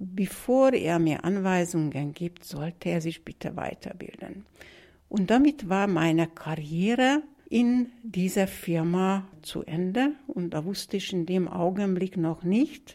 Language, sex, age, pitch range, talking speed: German, female, 60-79, 175-215 Hz, 135 wpm